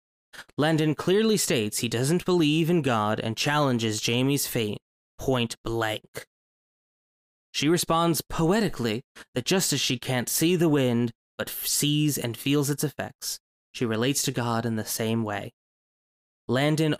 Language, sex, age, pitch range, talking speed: English, male, 20-39, 110-145 Hz, 140 wpm